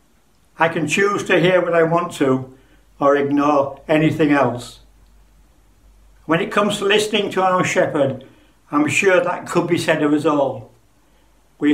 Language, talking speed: English, 160 wpm